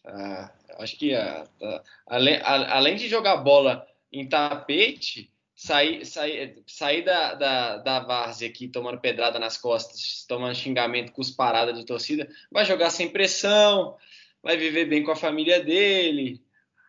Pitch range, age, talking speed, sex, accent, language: 120-160 Hz, 20-39, 130 wpm, male, Brazilian, Portuguese